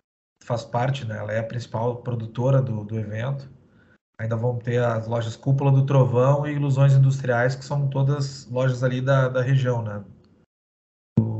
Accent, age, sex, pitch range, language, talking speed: Brazilian, 20-39, male, 120-135 Hz, Portuguese, 170 wpm